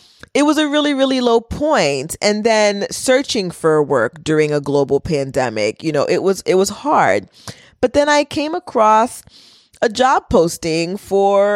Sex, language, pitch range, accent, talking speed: female, English, 150-235 Hz, American, 165 wpm